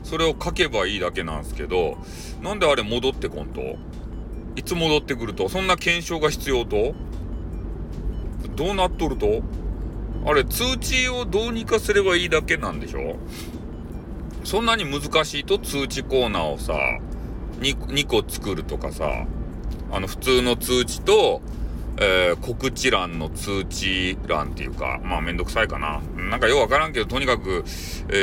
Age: 40-59